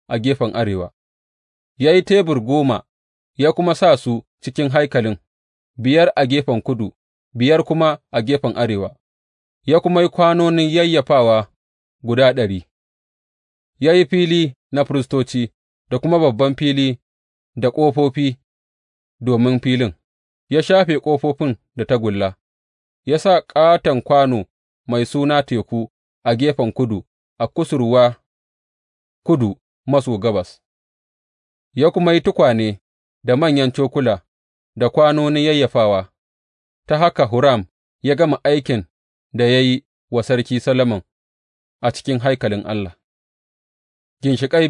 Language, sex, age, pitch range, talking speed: English, male, 30-49, 105-150 Hz, 100 wpm